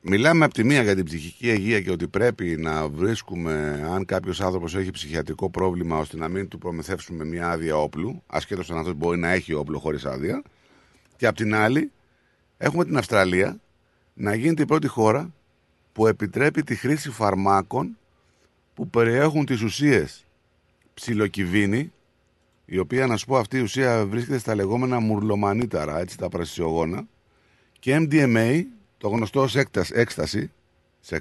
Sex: male